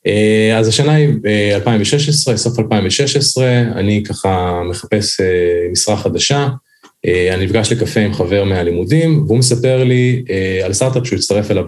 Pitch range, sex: 95-130 Hz, male